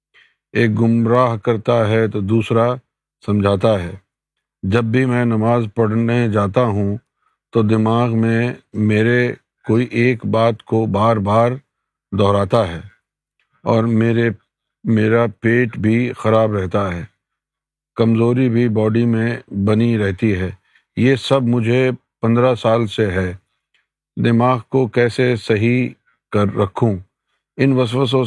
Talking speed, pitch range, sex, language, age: 120 wpm, 110-120 Hz, male, Urdu, 50-69